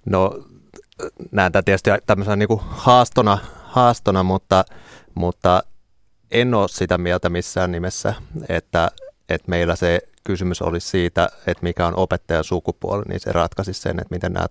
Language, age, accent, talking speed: Finnish, 30-49, native, 145 wpm